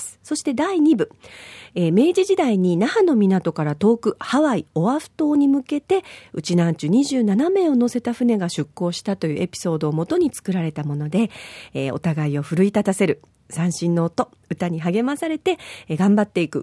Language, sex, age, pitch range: Japanese, female, 50-69, 170-270 Hz